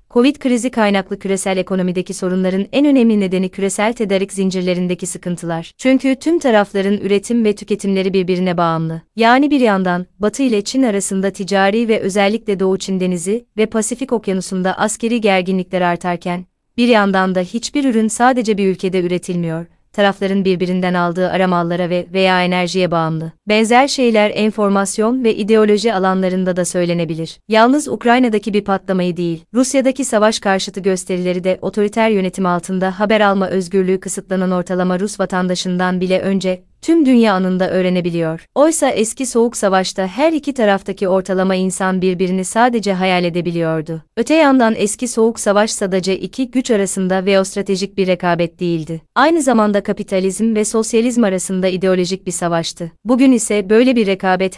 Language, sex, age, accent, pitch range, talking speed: Turkish, female, 30-49, native, 185-220 Hz, 145 wpm